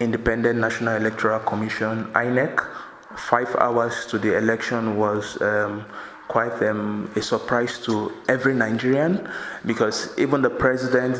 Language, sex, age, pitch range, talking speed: English, male, 20-39, 115-130 Hz, 125 wpm